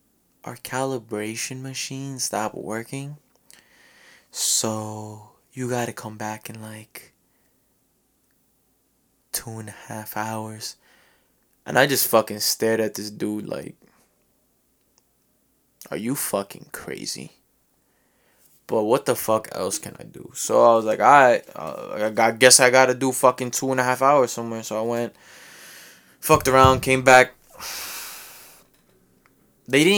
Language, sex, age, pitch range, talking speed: English, male, 20-39, 115-135 Hz, 130 wpm